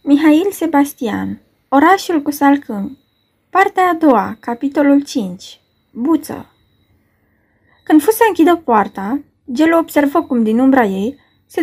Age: 20-39